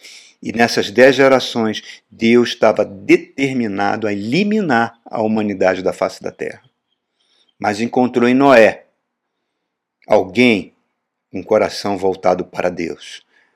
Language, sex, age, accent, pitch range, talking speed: Portuguese, male, 50-69, Brazilian, 100-125 Hz, 110 wpm